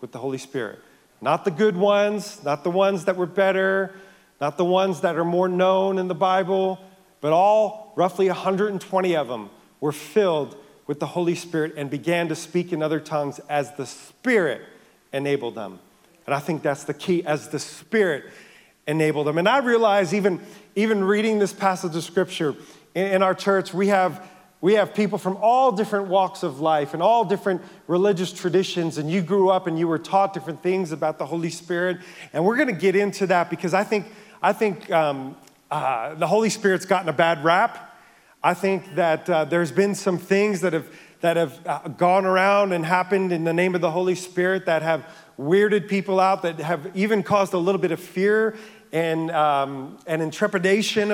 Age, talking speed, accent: 40-59, 195 wpm, American